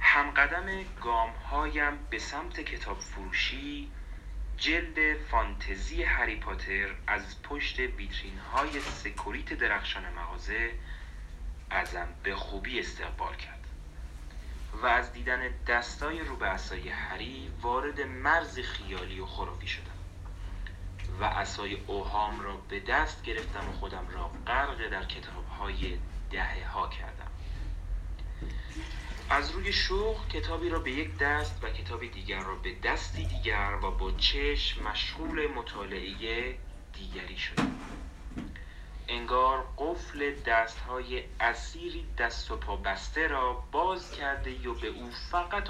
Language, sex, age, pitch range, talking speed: Persian, male, 30-49, 80-120 Hz, 115 wpm